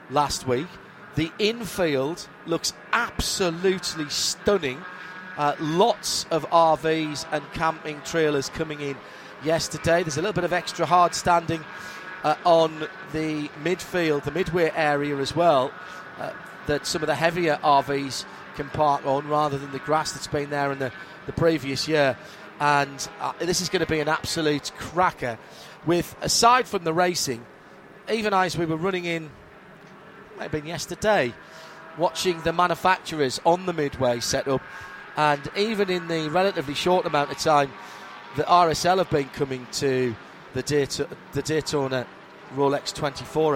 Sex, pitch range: male, 145-180 Hz